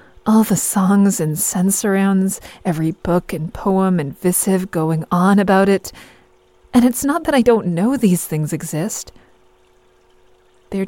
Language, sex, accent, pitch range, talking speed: English, female, American, 155-200 Hz, 145 wpm